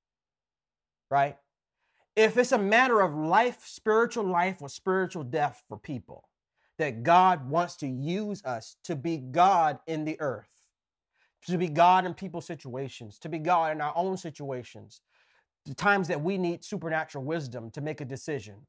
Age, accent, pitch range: 30-49, American, 150-195 Hz